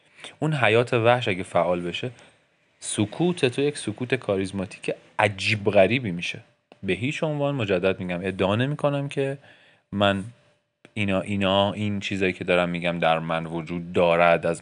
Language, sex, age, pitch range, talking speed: Persian, male, 30-49, 90-125 Hz, 145 wpm